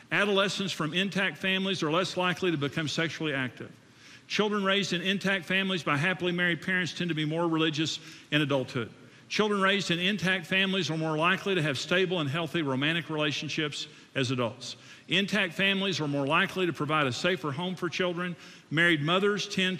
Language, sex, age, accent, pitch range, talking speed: English, male, 50-69, American, 140-180 Hz, 180 wpm